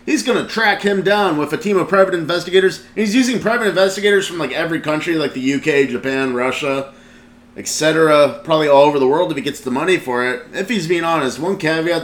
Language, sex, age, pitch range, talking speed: English, male, 30-49, 130-170 Hz, 220 wpm